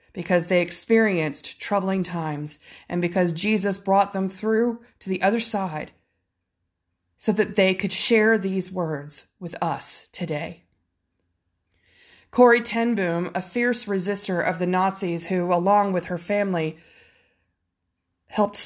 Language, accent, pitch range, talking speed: English, American, 165-210 Hz, 130 wpm